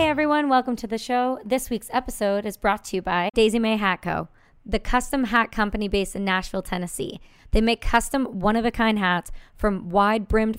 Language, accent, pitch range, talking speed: English, American, 195-240 Hz, 185 wpm